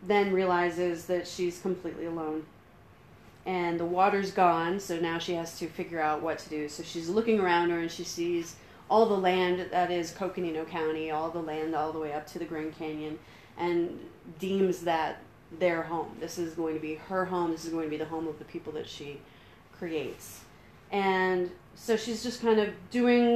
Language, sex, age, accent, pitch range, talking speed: English, female, 30-49, American, 155-180 Hz, 200 wpm